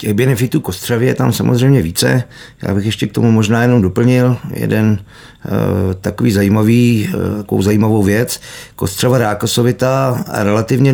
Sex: male